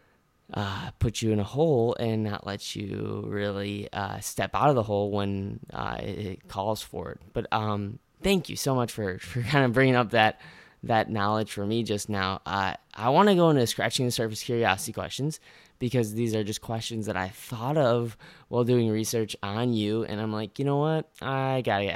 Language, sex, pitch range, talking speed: English, male, 95-120 Hz, 210 wpm